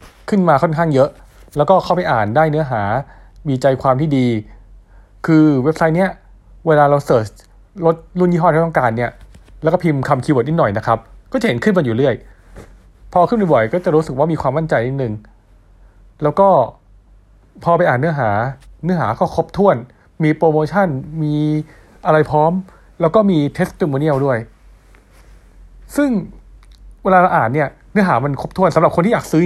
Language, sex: Thai, male